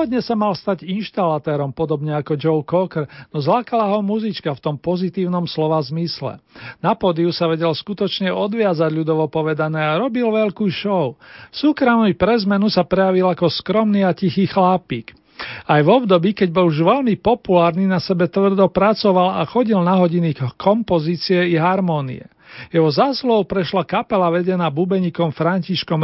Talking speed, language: 150 wpm, Slovak